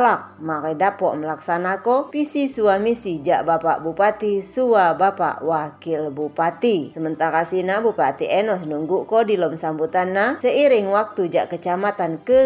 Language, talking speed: Indonesian, 135 wpm